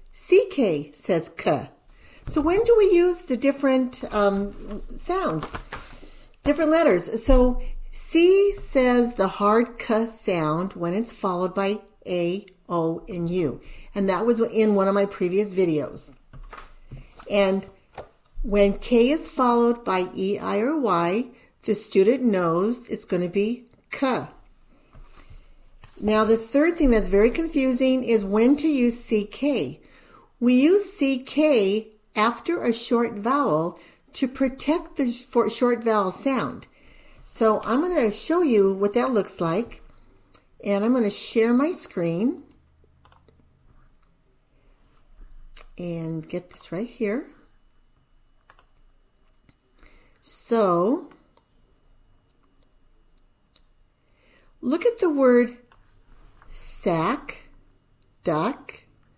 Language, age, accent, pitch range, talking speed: English, 60-79, American, 195-265 Hz, 110 wpm